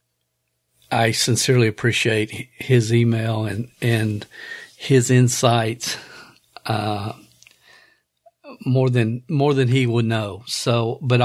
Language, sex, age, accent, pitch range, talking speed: English, male, 50-69, American, 110-125 Hz, 100 wpm